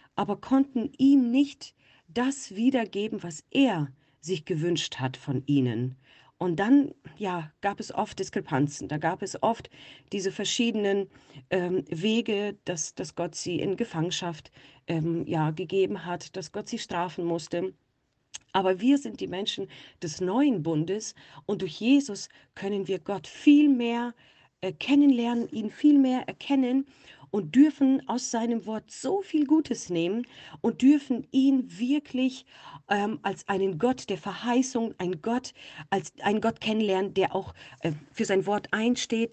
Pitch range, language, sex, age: 170-235 Hz, German, female, 40-59